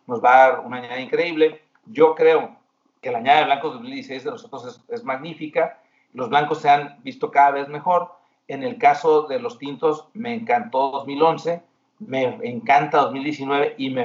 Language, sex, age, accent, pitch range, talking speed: Spanish, male, 40-59, Mexican, 145-235 Hz, 180 wpm